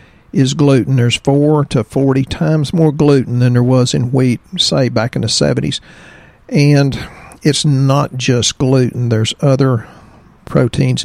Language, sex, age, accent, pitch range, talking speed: English, male, 50-69, American, 125-145 Hz, 145 wpm